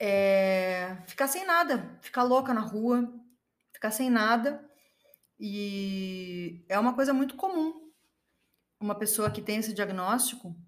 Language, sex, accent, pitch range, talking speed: Portuguese, female, Brazilian, 195-245 Hz, 130 wpm